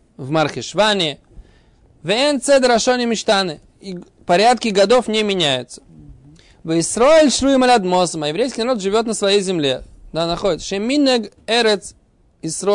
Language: Russian